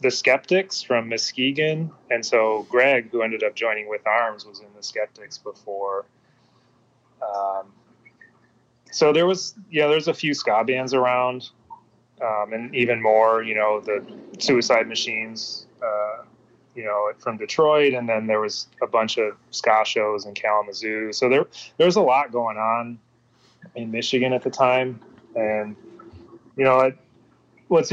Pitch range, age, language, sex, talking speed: 110-130 Hz, 30-49, English, male, 155 wpm